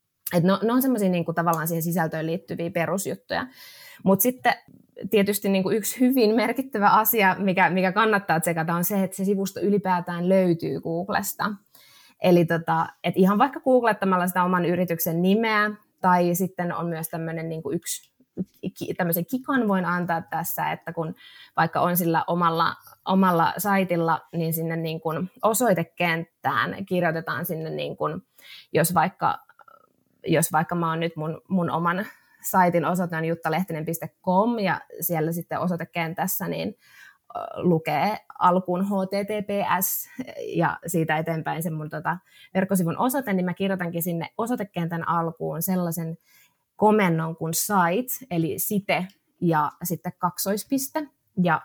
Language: Finnish